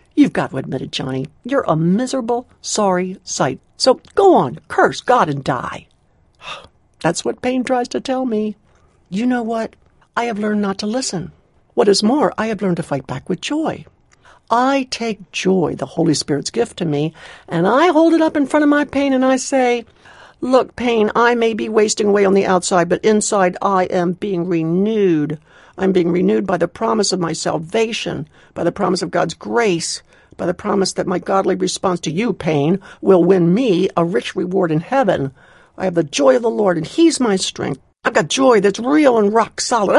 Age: 60-79